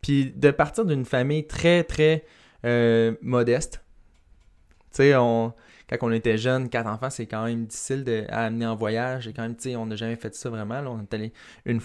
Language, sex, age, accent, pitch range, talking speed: English, male, 20-39, Canadian, 115-140 Hz, 220 wpm